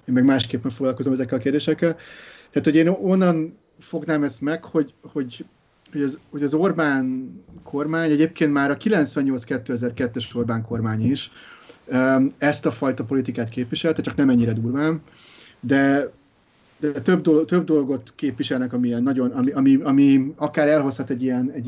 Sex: male